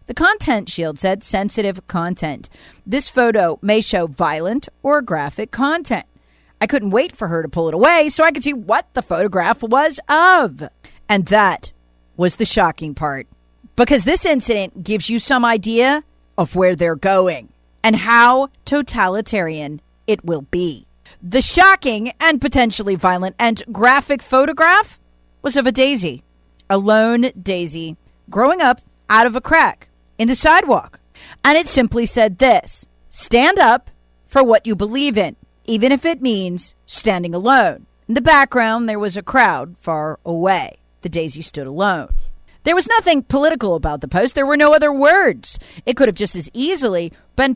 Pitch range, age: 175-270 Hz, 40-59